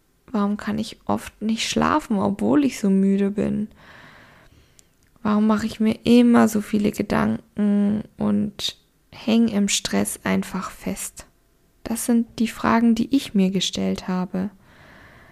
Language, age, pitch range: German, 10-29, 200-225 Hz